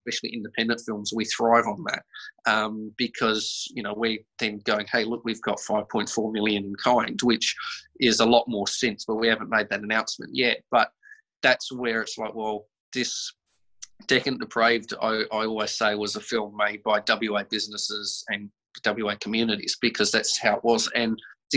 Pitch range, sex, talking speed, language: 110-125 Hz, male, 180 wpm, English